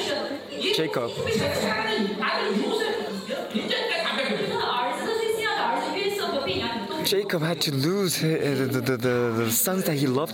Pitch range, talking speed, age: 155-215 Hz, 65 wpm, 20-39